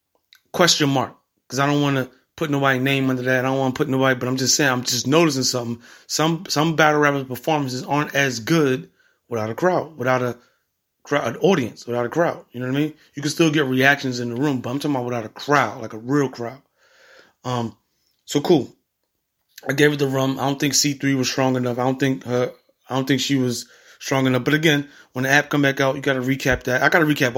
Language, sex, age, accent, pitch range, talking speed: English, male, 30-49, American, 125-150 Hz, 250 wpm